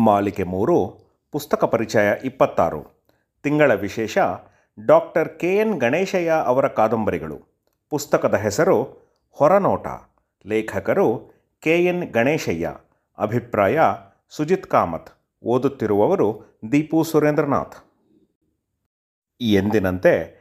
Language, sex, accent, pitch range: Kannada, male, native, 110-150 Hz